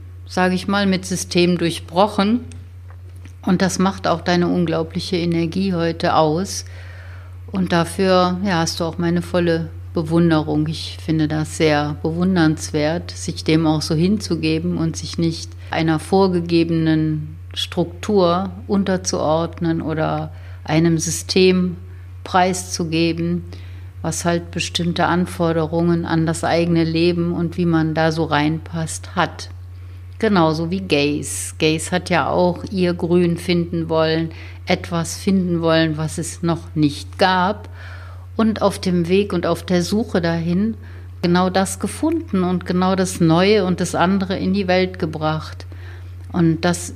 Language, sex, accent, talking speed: German, female, German, 130 wpm